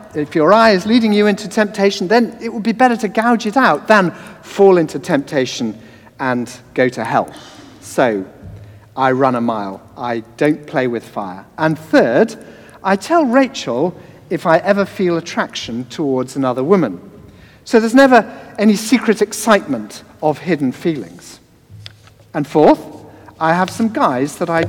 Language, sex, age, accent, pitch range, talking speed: English, male, 50-69, British, 135-220 Hz, 160 wpm